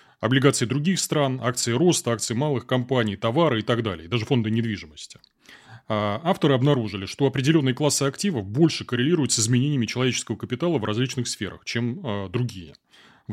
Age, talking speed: 30-49, 150 wpm